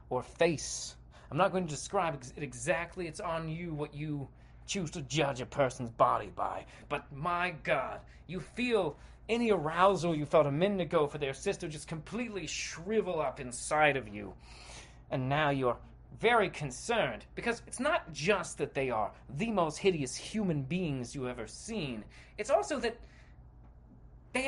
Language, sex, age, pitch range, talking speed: English, male, 30-49, 145-230 Hz, 165 wpm